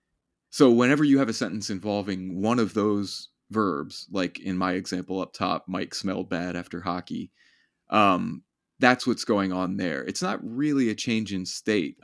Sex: male